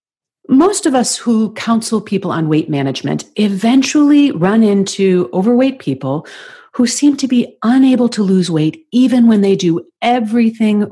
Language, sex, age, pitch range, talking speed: English, female, 40-59, 170-230 Hz, 150 wpm